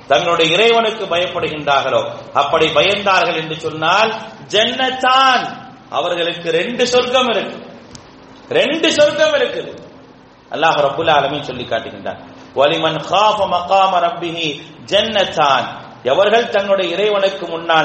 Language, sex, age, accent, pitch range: English, male, 40-59, Indian, 180-255 Hz